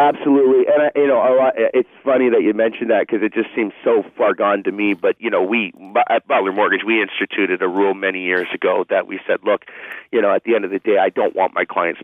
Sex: male